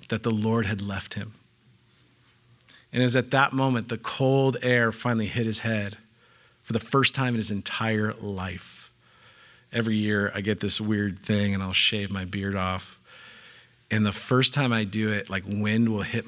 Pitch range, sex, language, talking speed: 100-120 Hz, male, English, 190 wpm